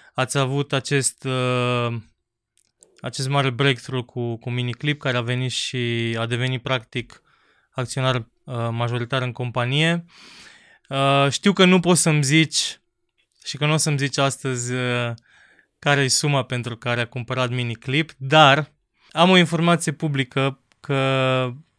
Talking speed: 140 wpm